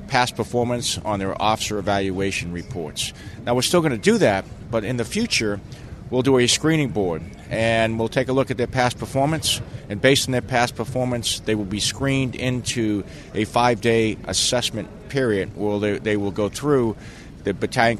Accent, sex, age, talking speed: American, male, 40-59, 180 wpm